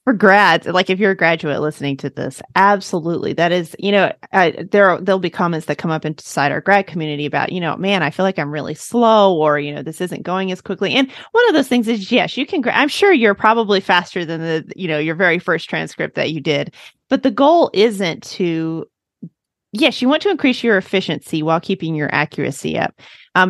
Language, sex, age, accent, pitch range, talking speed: English, female, 30-49, American, 165-220 Hz, 220 wpm